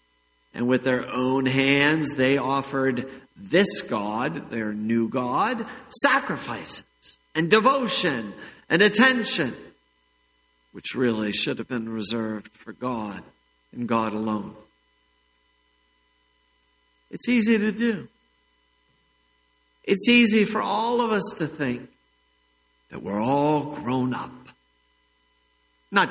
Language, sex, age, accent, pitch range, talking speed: English, male, 50-69, American, 140-220 Hz, 105 wpm